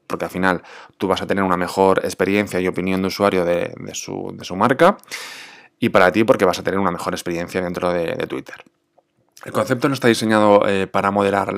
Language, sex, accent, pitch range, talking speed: Spanish, male, Spanish, 95-110 Hz, 220 wpm